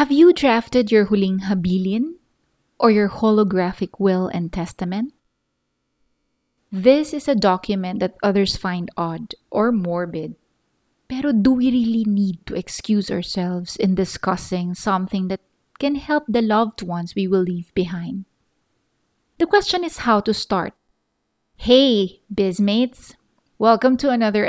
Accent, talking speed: Filipino, 130 wpm